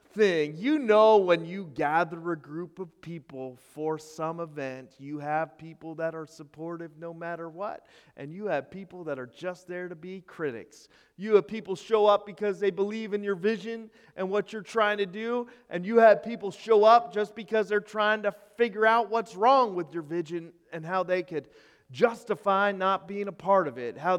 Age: 30-49